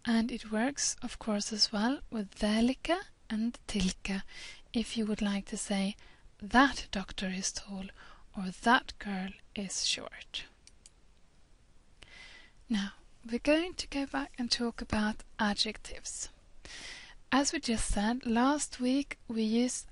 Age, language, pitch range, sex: 30-49, English, 205-240 Hz, female